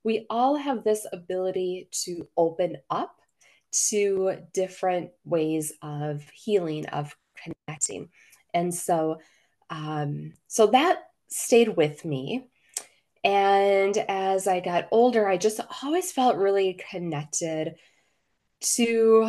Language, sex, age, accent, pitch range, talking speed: English, female, 20-39, American, 155-200 Hz, 110 wpm